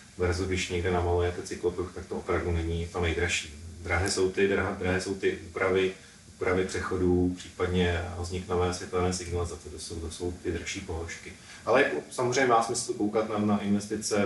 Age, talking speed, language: 40-59, 165 wpm, Czech